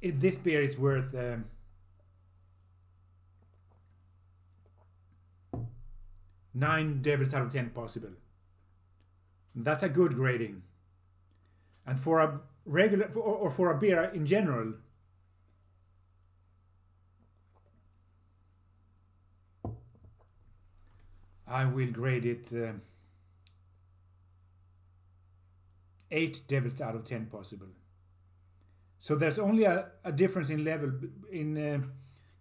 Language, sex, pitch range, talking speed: English, male, 90-130 Hz, 85 wpm